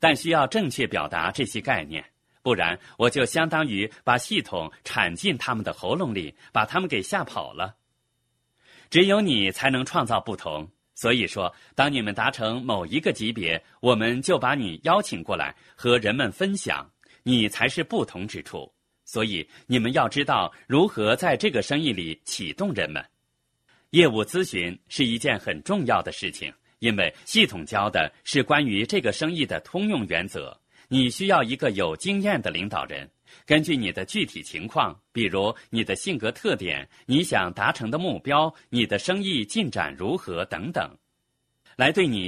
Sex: male